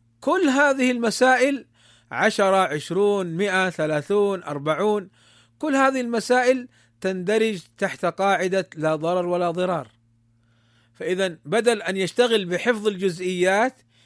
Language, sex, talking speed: Arabic, male, 100 wpm